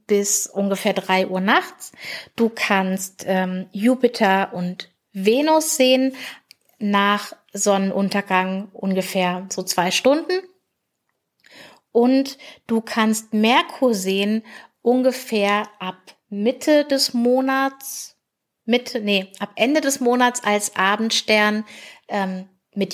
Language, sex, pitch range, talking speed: German, female, 190-240 Hz, 100 wpm